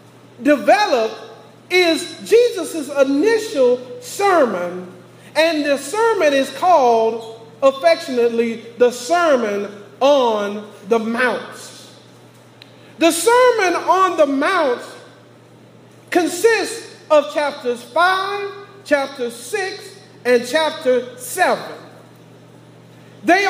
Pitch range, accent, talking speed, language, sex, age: 270-385 Hz, American, 80 wpm, English, male, 40-59